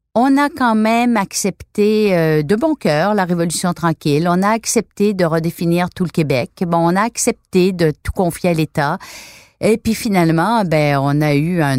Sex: female